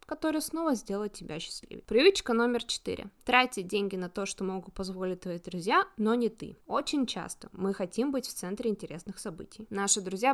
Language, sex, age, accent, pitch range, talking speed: Russian, female, 20-39, native, 185-230 Hz, 180 wpm